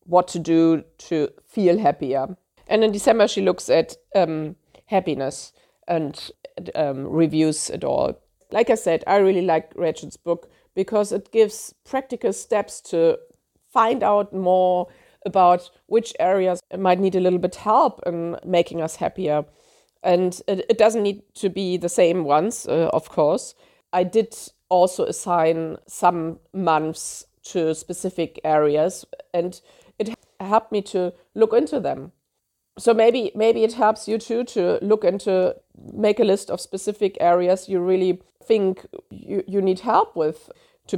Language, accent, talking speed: English, German, 150 wpm